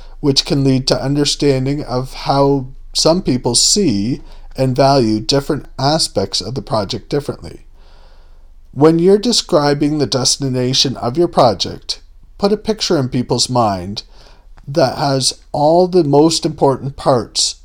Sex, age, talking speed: male, 40-59, 135 wpm